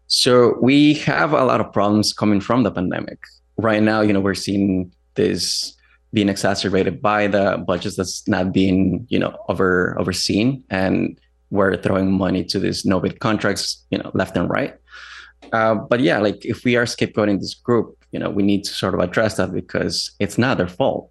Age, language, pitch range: 20-39, English, 90-105 Hz